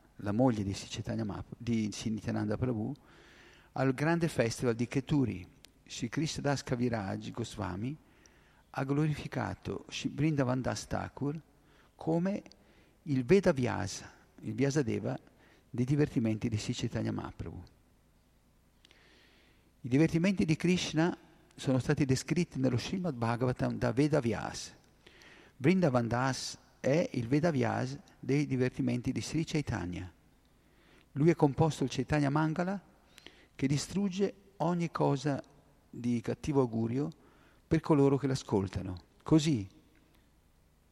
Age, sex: 50-69, male